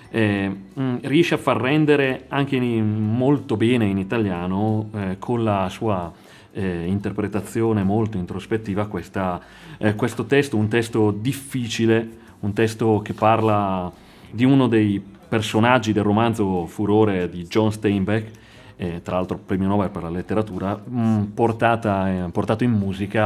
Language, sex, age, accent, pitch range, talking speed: Italian, male, 30-49, native, 100-120 Hz, 140 wpm